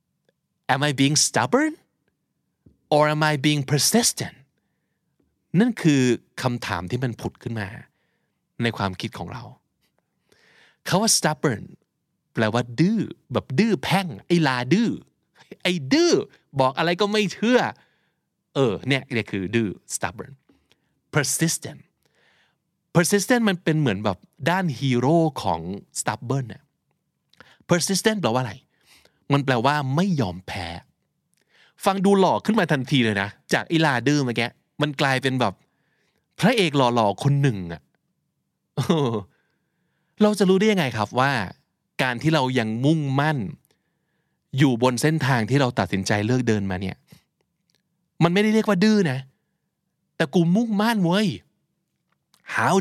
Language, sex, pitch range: Thai, male, 125-180 Hz